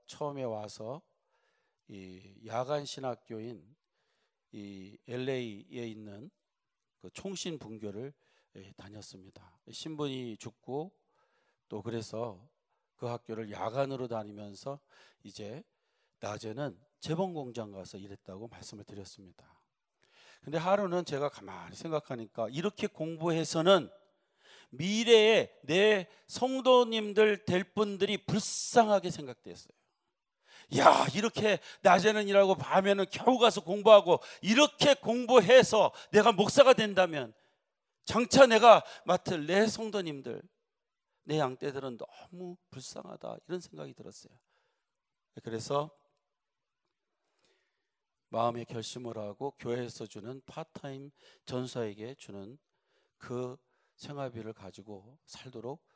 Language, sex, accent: Korean, male, native